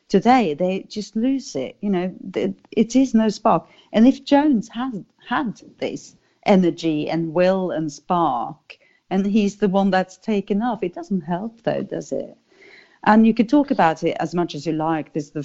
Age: 40-59